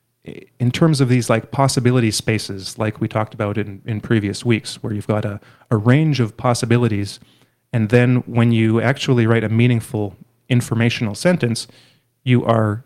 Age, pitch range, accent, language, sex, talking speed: 30-49, 110-125 Hz, American, English, male, 165 wpm